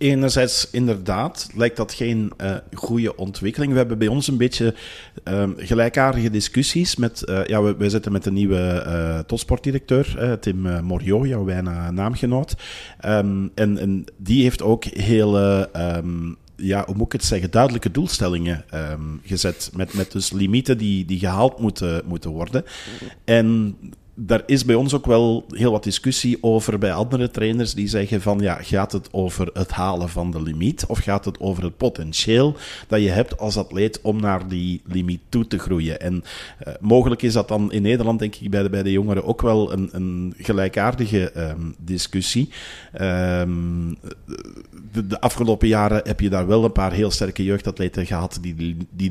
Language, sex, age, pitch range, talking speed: Dutch, male, 40-59, 90-115 Hz, 175 wpm